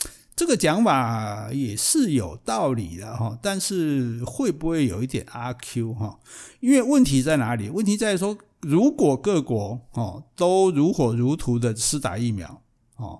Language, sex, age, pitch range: Chinese, male, 60-79, 120-170 Hz